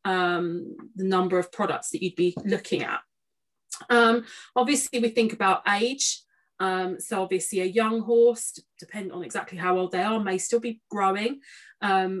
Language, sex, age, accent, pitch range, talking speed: English, female, 30-49, British, 190-235 Hz, 165 wpm